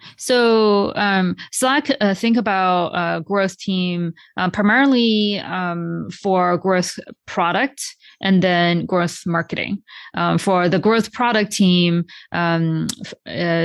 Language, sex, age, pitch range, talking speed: English, female, 20-39, 175-195 Hz, 120 wpm